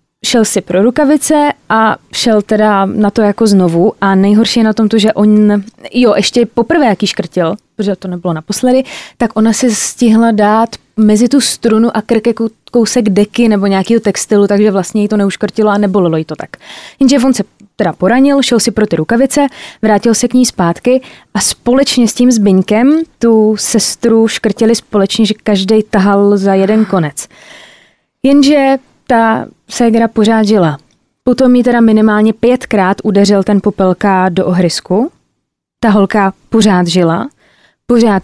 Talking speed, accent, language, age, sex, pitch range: 160 wpm, native, Czech, 20-39, female, 195-230 Hz